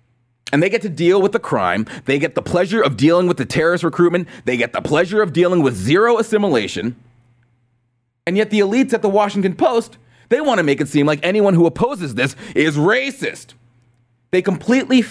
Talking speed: 200 wpm